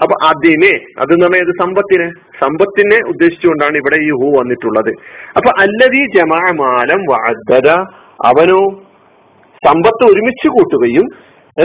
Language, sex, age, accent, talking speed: Malayalam, male, 40-59, native, 95 wpm